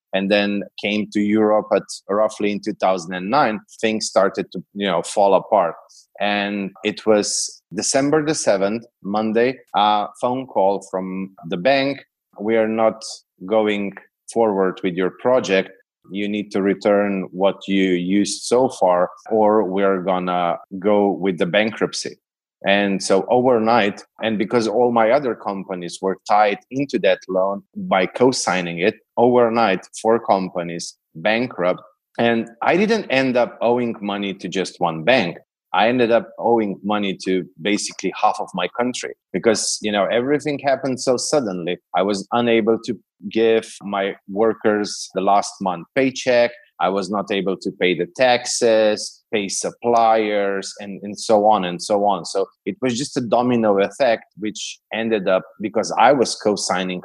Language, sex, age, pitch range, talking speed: English, male, 30-49, 95-115 Hz, 155 wpm